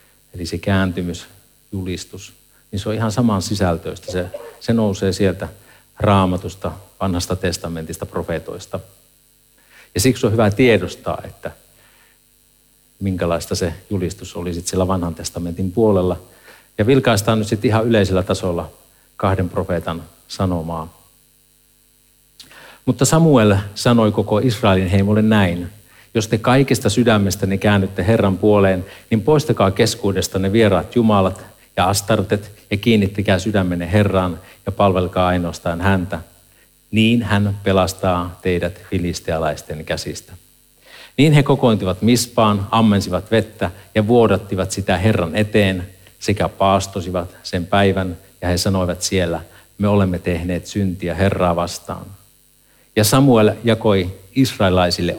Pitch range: 90-110 Hz